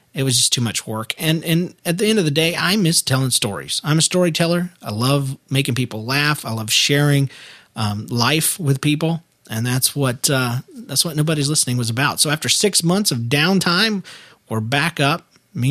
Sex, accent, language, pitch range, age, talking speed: male, American, English, 120-145 Hz, 40-59, 205 wpm